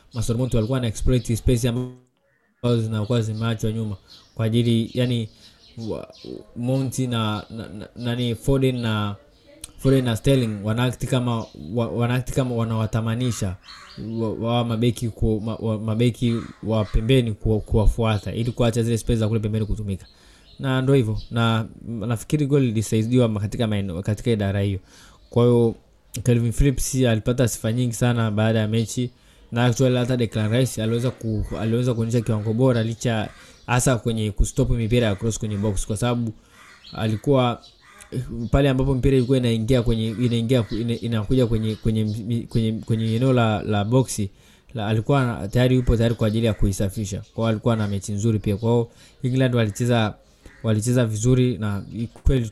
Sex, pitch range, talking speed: male, 110-125 Hz, 145 wpm